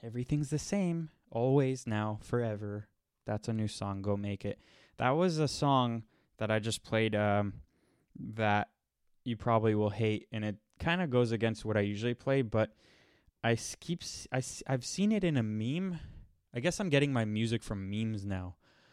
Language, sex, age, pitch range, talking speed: English, male, 20-39, 105-130 Hz, 170 wpm